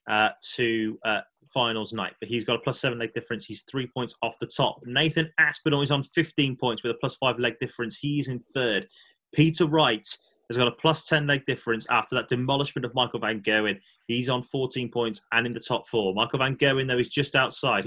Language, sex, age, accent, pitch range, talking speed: English, male, 20-39, British, 110-140 Hz, 220 wpm